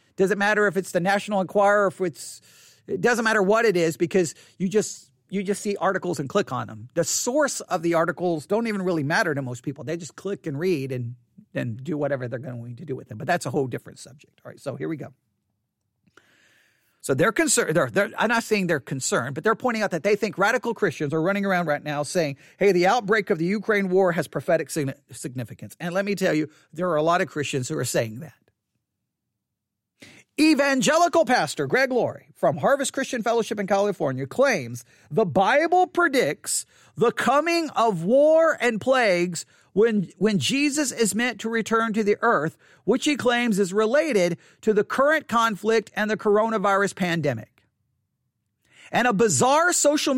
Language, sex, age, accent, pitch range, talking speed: English, male, 50-69, American, 160-235 Hz, 195 wpm